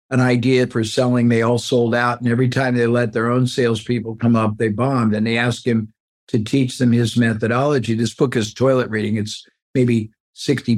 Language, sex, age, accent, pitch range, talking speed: English, male, 50-69, American, 115-140 Hz, 205 wpm